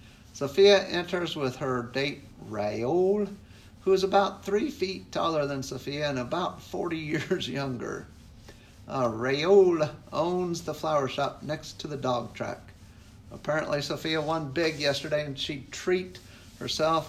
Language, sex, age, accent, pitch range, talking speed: English, male, 50-69, American, 120-155 Hz, 135 wpm